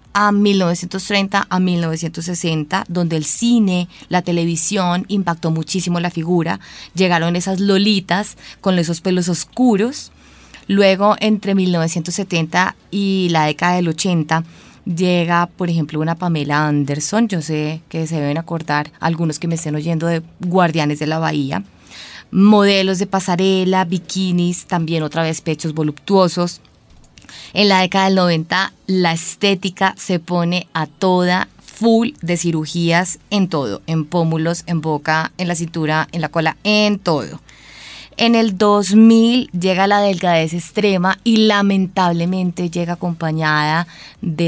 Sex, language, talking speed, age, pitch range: female, Spanish, 135 wpm, 20-39, 165-195 Hz